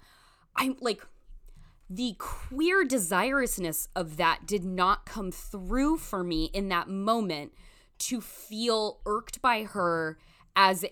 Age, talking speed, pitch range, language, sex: 20-39, 120 wpm, 175-225 Hz, English, female